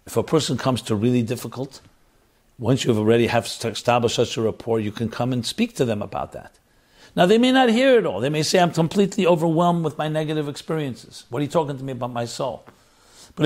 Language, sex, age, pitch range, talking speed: English, male, 60-79, 120-165 Hz, 225 wpm